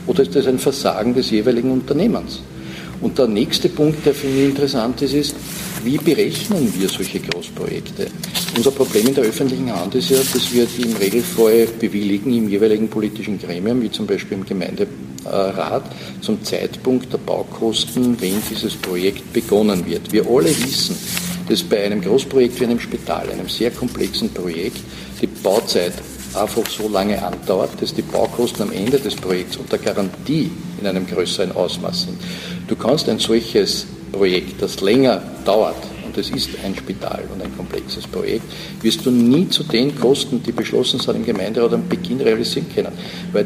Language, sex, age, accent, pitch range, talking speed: German, male, 50-69, Austrian, 105-135 Hz, 170 wpm